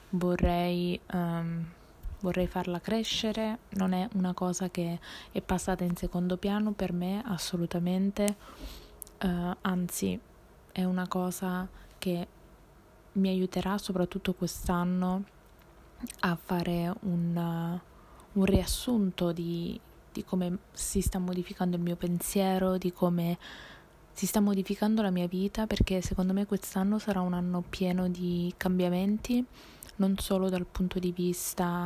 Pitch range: 180-200 Hz